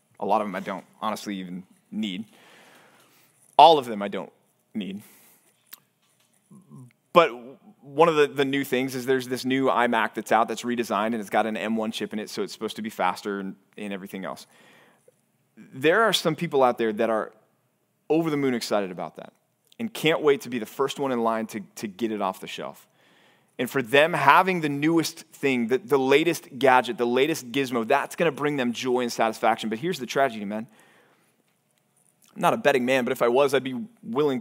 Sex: male